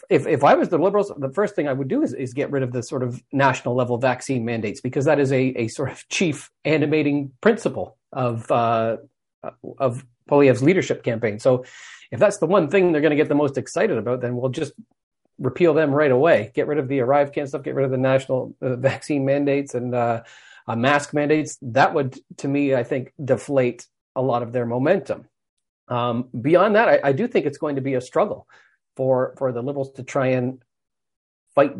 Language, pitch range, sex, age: English, 130-160 Hz, male, 40-59